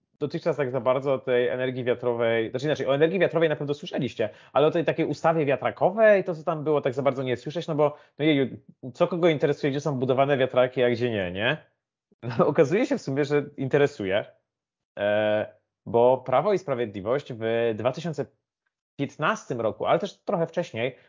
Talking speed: 180 wpm